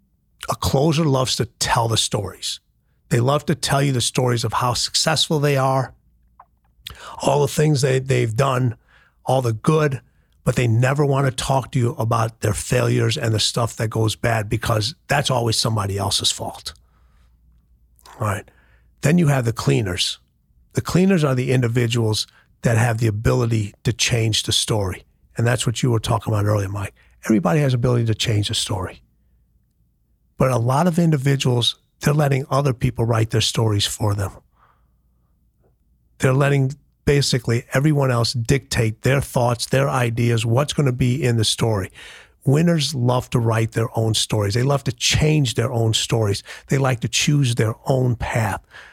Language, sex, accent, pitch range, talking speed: English, male, American, 110-135 Hz, 170 wpm